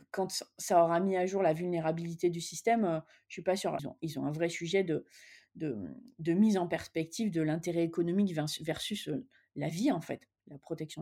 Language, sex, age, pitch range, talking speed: French, female, 30-49, 160-210 Hz, 225 wpm